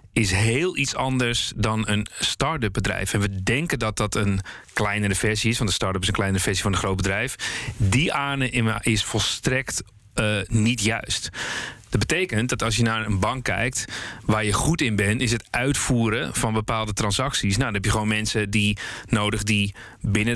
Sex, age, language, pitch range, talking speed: male, 40-59, Dutch, 105-120 Hz, 190 wpm